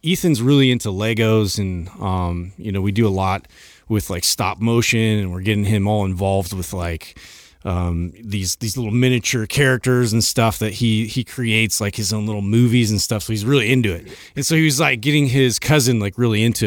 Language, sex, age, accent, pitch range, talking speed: English, male, 30-49, American, 95-120 Hz, 210 wpm